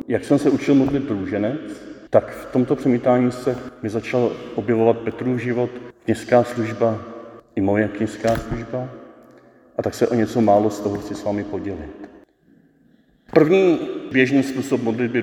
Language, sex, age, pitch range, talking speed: Czech, male, 40-59, 110-140 Hz, 150 wpm